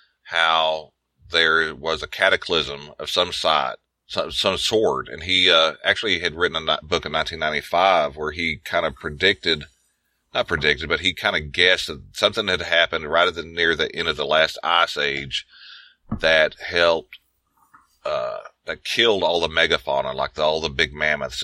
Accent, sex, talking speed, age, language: American, male, 170 wpm, 40-59, English